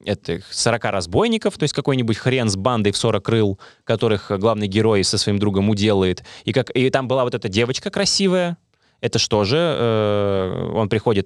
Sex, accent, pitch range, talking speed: male, native, 100-125 Hz, 180 wpm